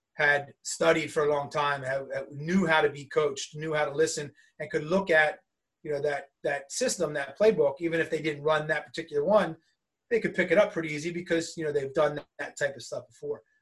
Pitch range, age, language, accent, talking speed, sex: 150-180 Hz, 30-49, English, American, 225 wpm, male